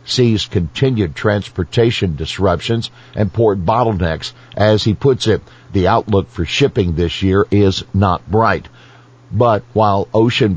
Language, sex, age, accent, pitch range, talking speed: English, male, 50-69, American, 95-115 Hz, 130 wpm